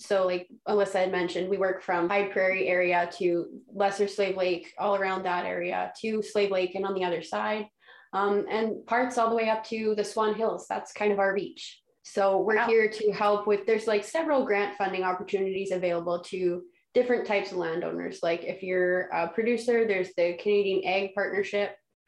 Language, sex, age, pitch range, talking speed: English, female, 20-39, 185-220 Hz, 195 wpm